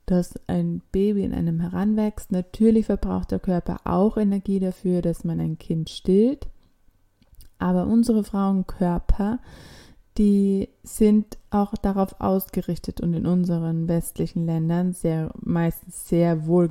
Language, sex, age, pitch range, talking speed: German, female, 20-39, 175-205 Hz, 125 wpm